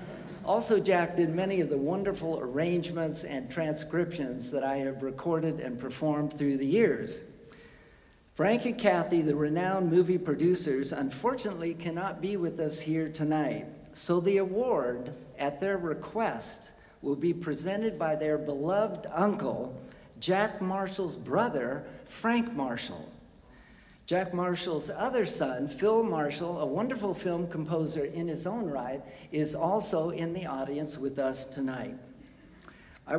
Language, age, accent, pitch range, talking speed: English, 50-69, American, 150-195 Hz, 135 wpm